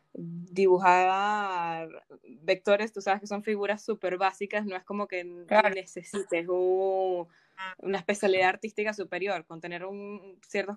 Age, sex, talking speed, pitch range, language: 10-29, female, 130 wpm, 180-215 Hz, Spanish